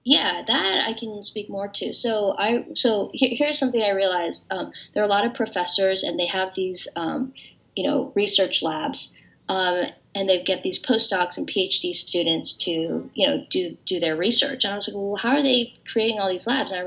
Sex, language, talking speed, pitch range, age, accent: female, English, 215 wpm, 180-225 Hz, 20-39, American